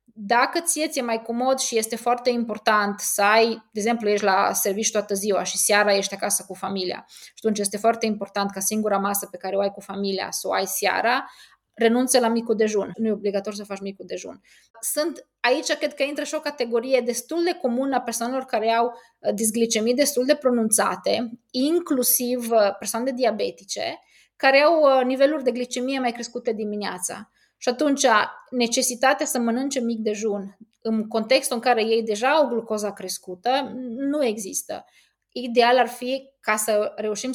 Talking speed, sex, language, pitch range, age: 175 wpm, female, Romanian, 210-255 Hz, 20-39